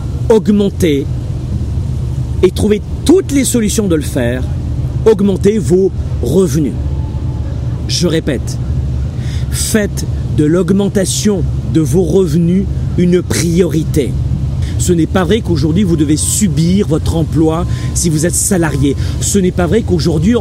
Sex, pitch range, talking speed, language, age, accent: male, 130-210 Hz, 120 wpm, French, 40-59, French